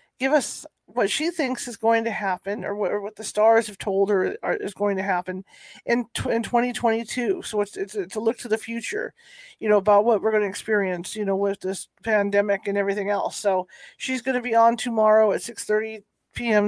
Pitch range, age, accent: 200-230 Hz, 40-59, American